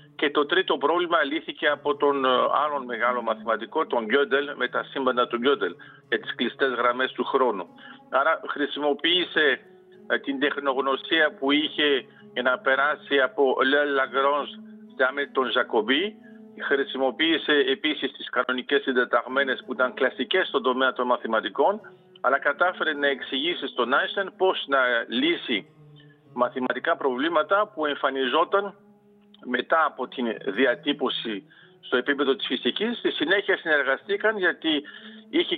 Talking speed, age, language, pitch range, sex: 125 wpm, 50-69, Greek, 130-200 Hz, male